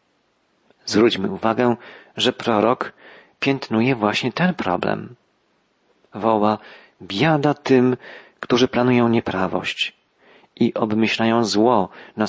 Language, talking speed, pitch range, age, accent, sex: Polish, 90 wpm, 105-125 Hz, 40-59, native, male